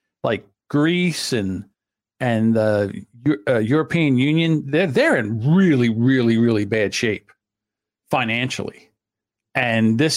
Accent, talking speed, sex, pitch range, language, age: American, 110 wpm, male, 115-160 Hz, English, 50-69